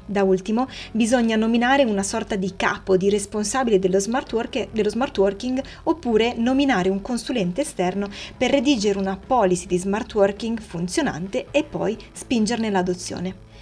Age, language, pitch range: 20-39, Italian, 185-230 Hz